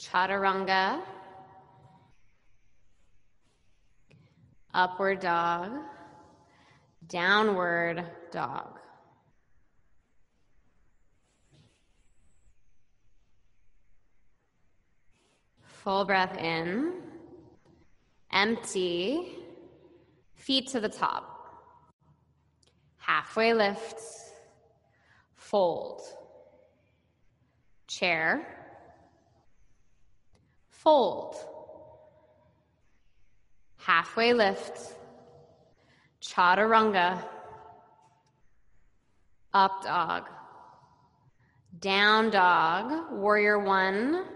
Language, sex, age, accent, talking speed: English, female, 20-39, American, 35 wpm